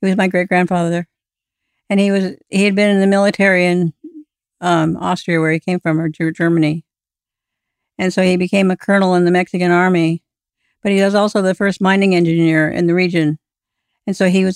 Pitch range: 170-190 Hz